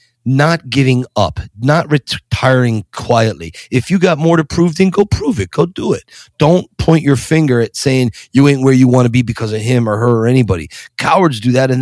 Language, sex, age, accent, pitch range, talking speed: English, male, 40-59, American, 115-140 Hz, 220 wpm